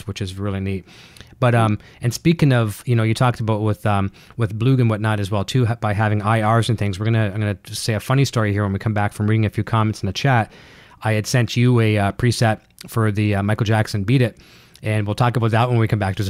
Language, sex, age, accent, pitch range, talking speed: English, male, 30-49, American, 105-120 Hz, 275 wpm